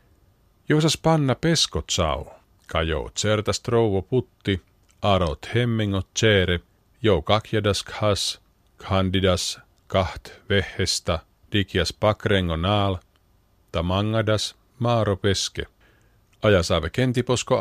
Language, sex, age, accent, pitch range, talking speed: Finnish, male, 50-69, native, 95-115 Hz, 85 wpm